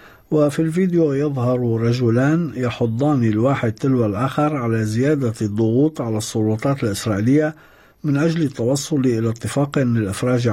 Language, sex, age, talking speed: Arabic, male, 60-79, 115 wpm